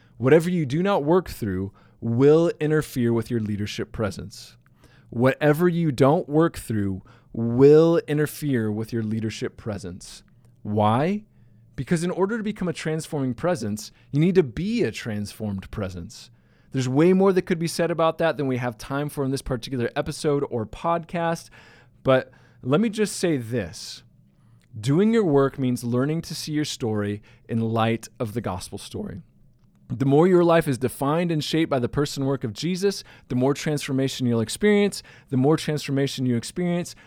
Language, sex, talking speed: English, male, 170 wpm